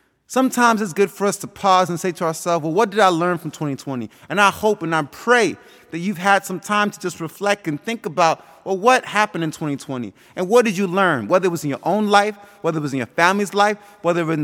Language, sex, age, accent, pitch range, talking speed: English, male, 30-49, American, 165-205 Hz, 260 wpm